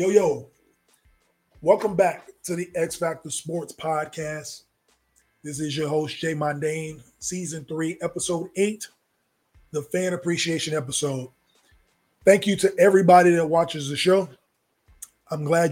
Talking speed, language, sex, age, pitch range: 125 wpm, English, male, 20-39, 150-175 Hz